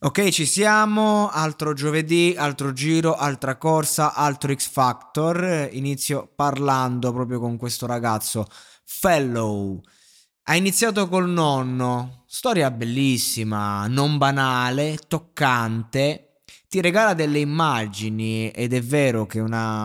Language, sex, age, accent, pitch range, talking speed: Italian, male, 20-39, native, 115-170 Hz, 110 wpm